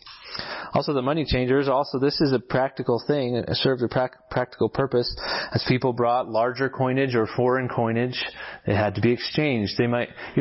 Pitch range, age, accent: 110-130 Hz, 30-49, American